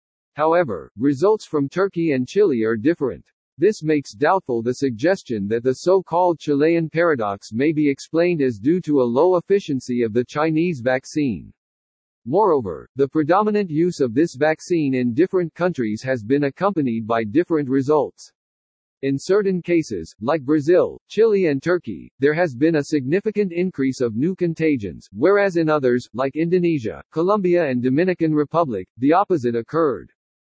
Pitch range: 130-175 Hz